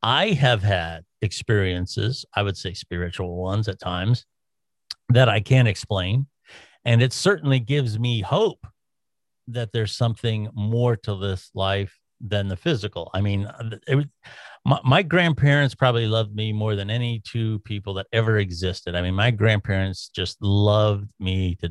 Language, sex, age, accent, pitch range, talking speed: English, male, 50-69, American, 95-120 Hz, 155 wpm